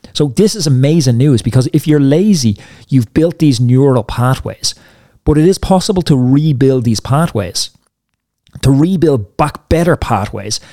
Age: 30-49